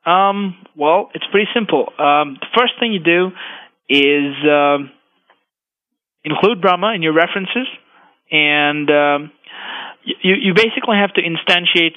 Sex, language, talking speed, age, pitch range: male, English, 130 wpm, 20-39, 150-185 Hz